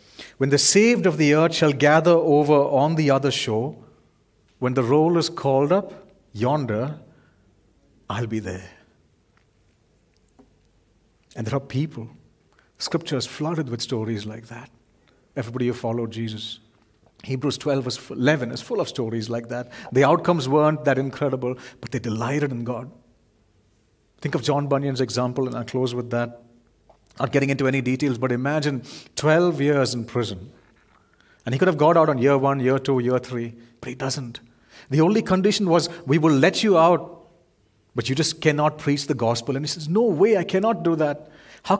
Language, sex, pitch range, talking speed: English, male, 115-155 Hz, 170 wpm